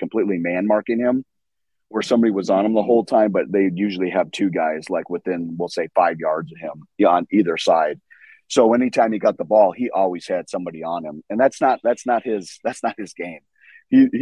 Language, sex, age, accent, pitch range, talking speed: English, male, 30-49, American, 90-115 Hz, 220 wpm